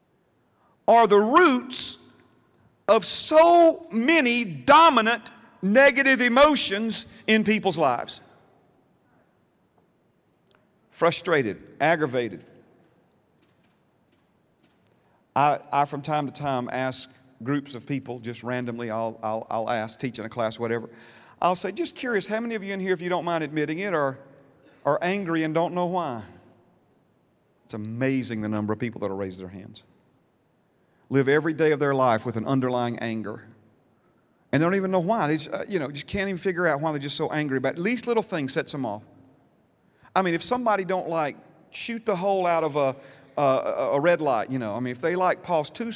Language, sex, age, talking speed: English, male, 50-69, 170 wpm